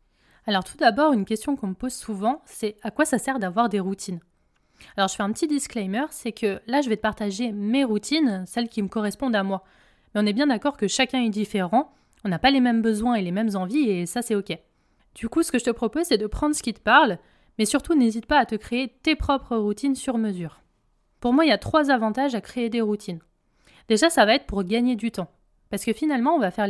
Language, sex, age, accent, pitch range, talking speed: French, female, 20-39, French, 205-265 Hz, 250 wpm